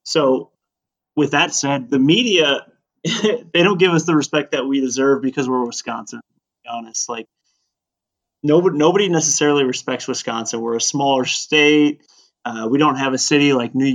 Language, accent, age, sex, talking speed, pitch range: English, American, 20-39, male, 165 wpm, 120-140 Hz